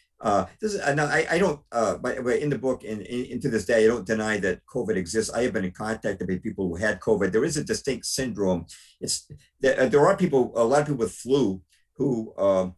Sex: male